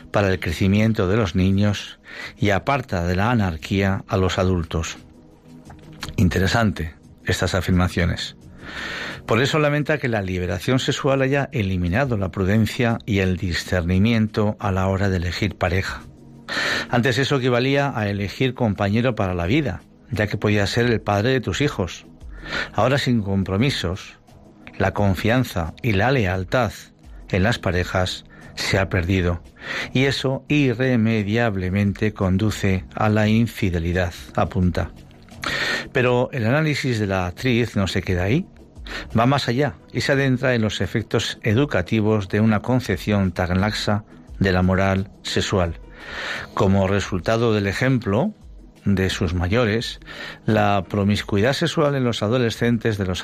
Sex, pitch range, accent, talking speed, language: male, 95-120 Hz, Spanish, 135 wpm, Spanish